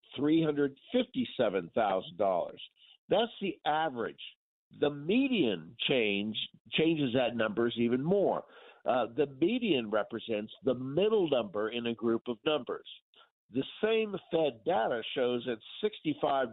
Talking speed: 115 wpm